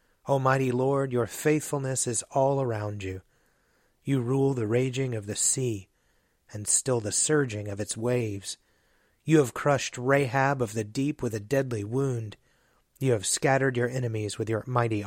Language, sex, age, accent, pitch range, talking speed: English, male, 30-49, American, 110-135 Hz, 165 wpm